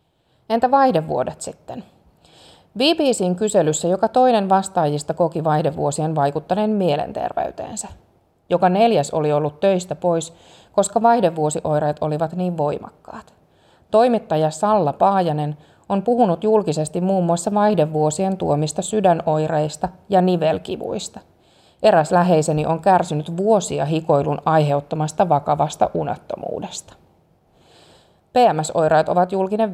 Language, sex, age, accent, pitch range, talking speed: Finnish, female, 30-49, native, 155-200 Hz, 95 wpm